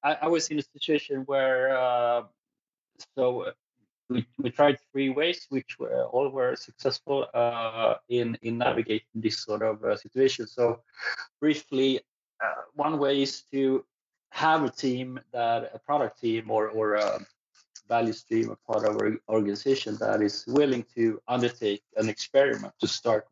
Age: 30-49